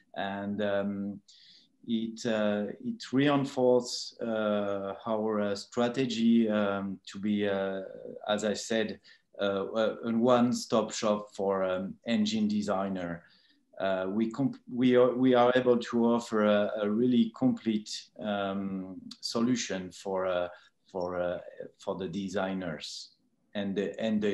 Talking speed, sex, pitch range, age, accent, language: 125 wpm, male, 100-120 Hz, 30-49, French, English